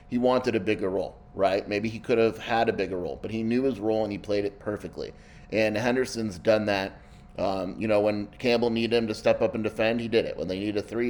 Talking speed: 260 wpm